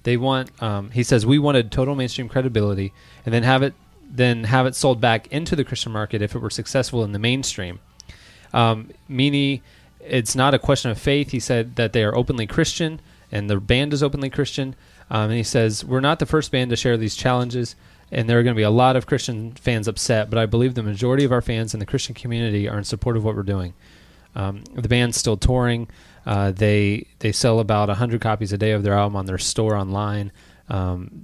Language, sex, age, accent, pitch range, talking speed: English, male, 20-39, American, 105-125 Hz, 225 wpm